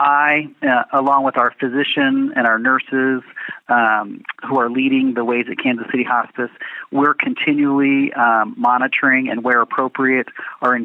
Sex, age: male, 40-59